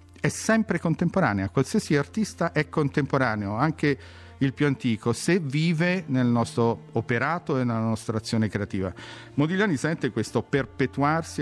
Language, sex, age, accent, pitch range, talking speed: Italian, male, 50-69, native, 110-145 Hz, 130 wpm